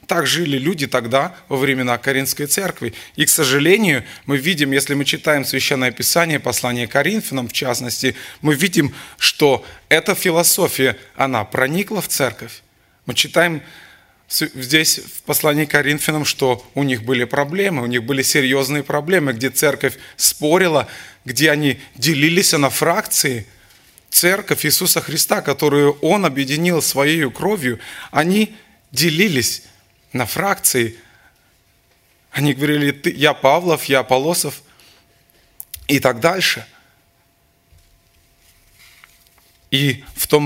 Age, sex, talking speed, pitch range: 20-39, male, 115 wpm, 125-155 Hz